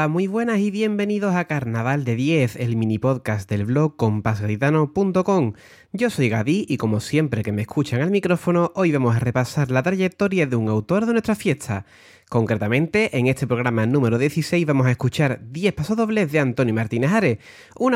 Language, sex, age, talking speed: Spanish, male, 30-49, 175 wpm